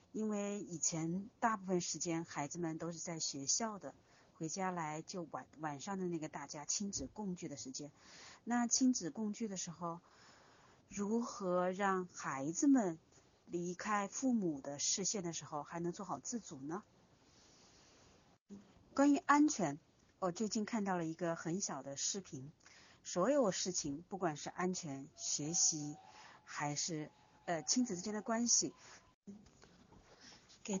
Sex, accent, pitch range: female, native, 160-205 Hz